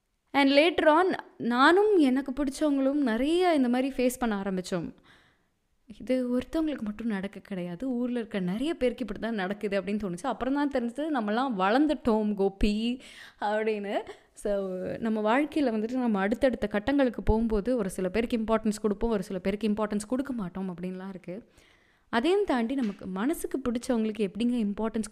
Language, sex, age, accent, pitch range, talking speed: Tamil, female, 20-39, native, 195-265 Hz, 140 wpm